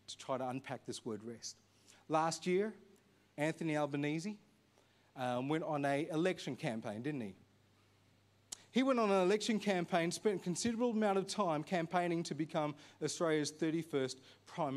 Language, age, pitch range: English, 30-49, 130-195 Hz